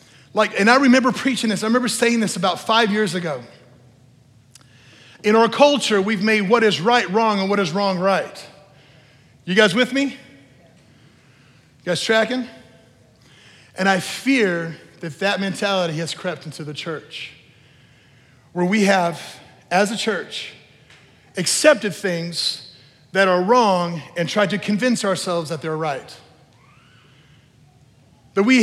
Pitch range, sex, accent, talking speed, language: 155-235 Hz, male, American, 140 wpm, English